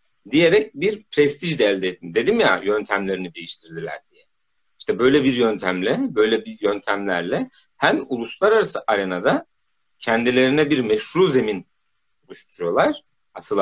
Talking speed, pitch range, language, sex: 120 wpm, 130-200 Hz, Turkish, male